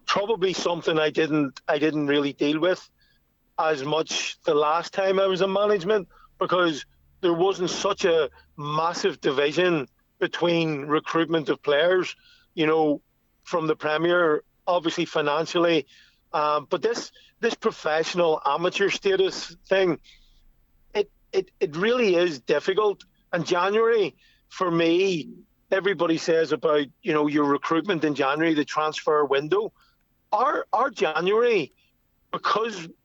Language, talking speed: English, 125 wpm